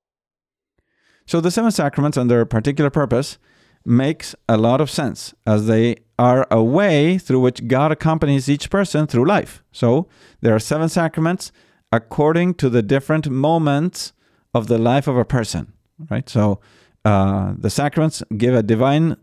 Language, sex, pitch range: English, male, 115-155 Hz